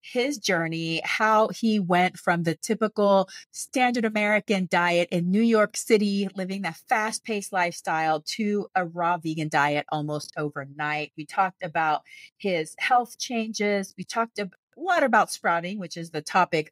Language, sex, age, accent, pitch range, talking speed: English, female, 30-49, American, 165-215 Hz, 155 wpm